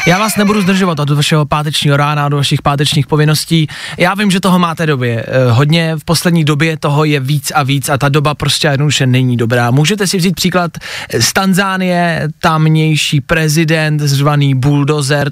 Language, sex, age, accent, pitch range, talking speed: Czech, male, 20-39, native, 135-165 Hz, 170 wpm